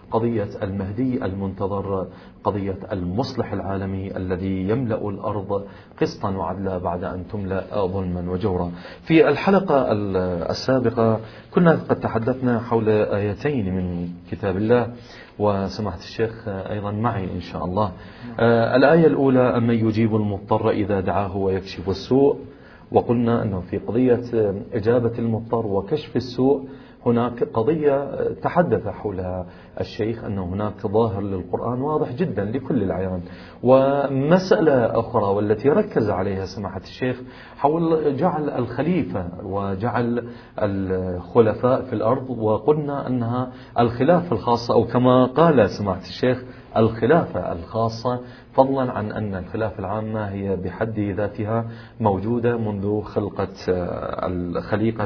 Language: Arabic